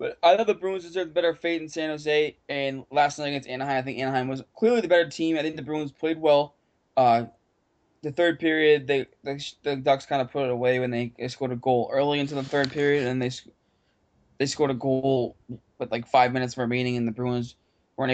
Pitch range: 125-150 Hz